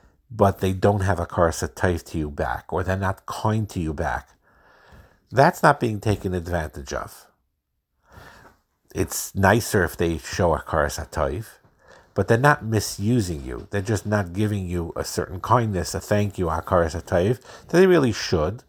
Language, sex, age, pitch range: English, male, 50-69, 85-105 Hz